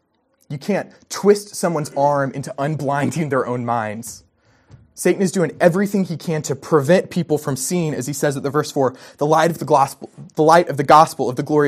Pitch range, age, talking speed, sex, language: 130-170 Hz, 20-39, 210 wpm, male, English